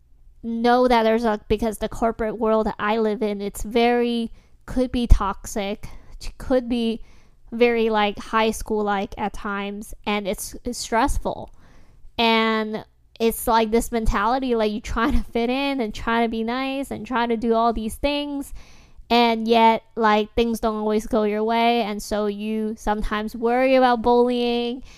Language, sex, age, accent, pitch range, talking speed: English, female, 10-29, American, 215-245 Hz, 165 wpm